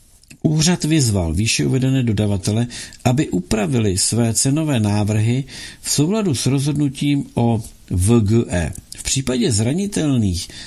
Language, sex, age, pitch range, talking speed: Czech, male, 60-79, 100-130 Hz, 105 wpm